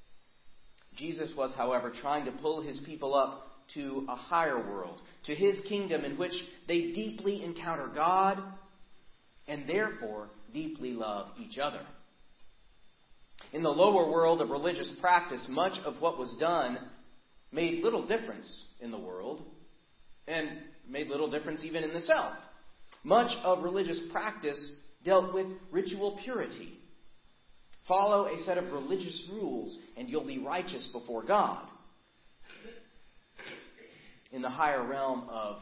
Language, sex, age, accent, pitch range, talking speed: English, male, 40-59, American, 140-190 Hz, 135 wpm